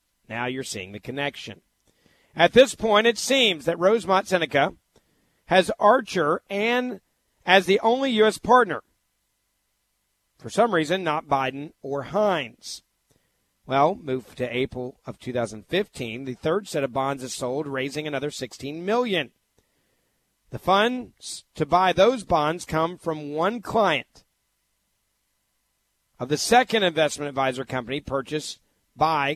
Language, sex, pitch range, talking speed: English, male, 130-195 Hz, 130 wpm